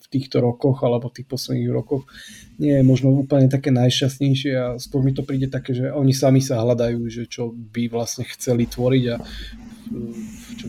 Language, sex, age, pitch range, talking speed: Slovak, male, 20-39, 120-135 Hz, 175 wpm